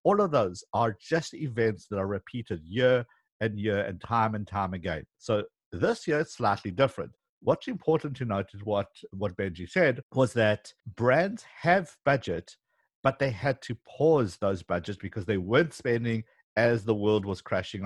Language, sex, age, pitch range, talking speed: English, male, 60-79, 100-145 Hz, 180 wpm